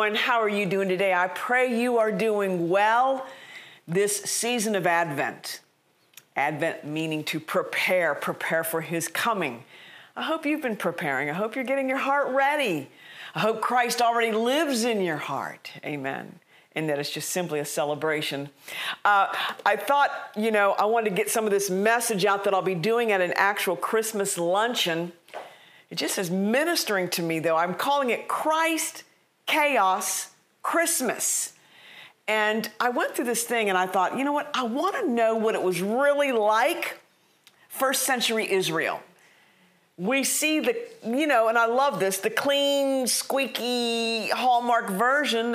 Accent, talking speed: American, 165 wpm